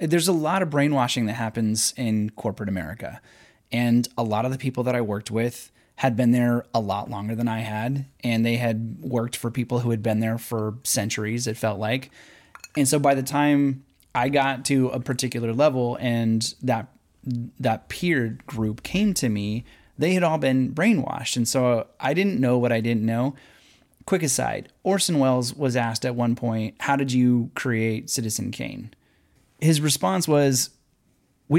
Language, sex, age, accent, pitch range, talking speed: English, male, 20-39, American, 115-140 Hz, 180 wpm